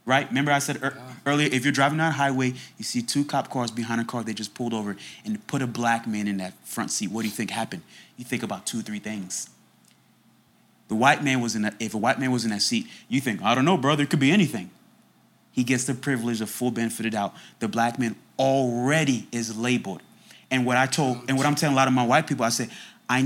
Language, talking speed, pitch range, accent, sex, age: English, 260 wpm, 125-155 Hz, American, male, 20-39